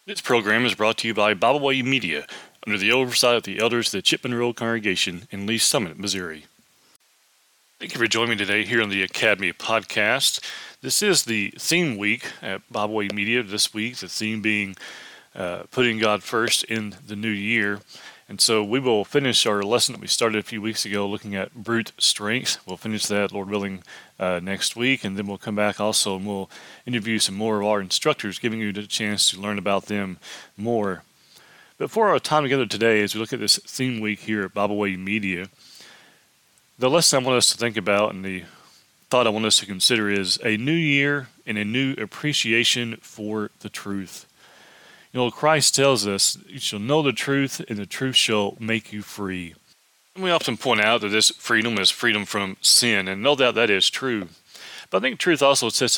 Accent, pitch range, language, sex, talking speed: American, 100-120 Hz, English, male, 205 wpm